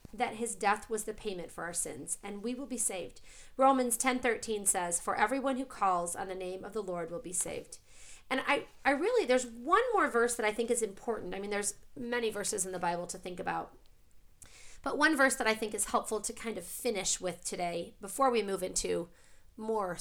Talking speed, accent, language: 220 wpm, American, English